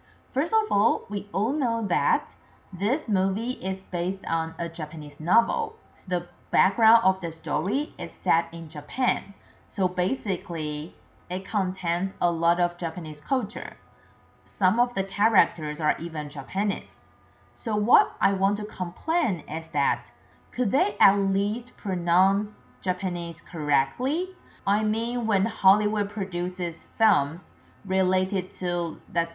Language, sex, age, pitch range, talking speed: English, female, 30-49, 170-225 Hz, 130 wpm